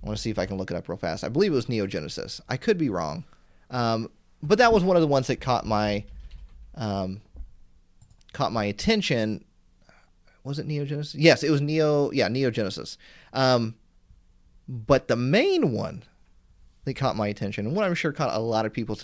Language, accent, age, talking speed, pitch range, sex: English, American, 30-49, 200 wpm, 100-150 Hz, male